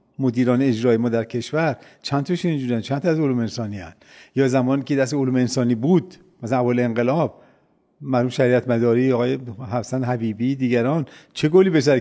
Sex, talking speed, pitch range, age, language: male, 160 wpm, 120-160 Hz, 50-69, Persian